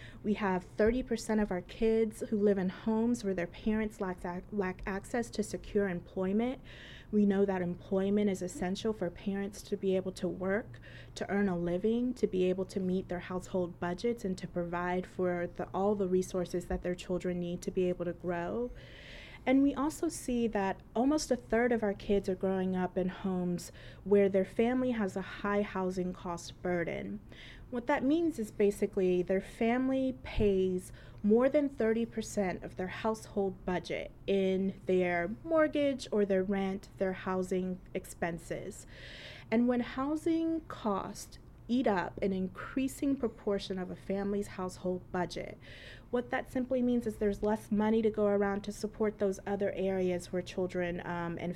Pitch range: 180-215 Hz